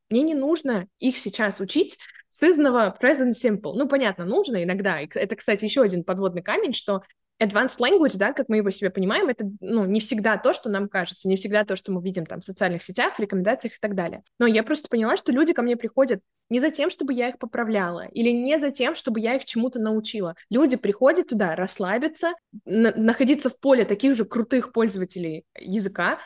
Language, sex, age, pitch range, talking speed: Russian, female, 20-39, 195-255 Hz, 205 wpm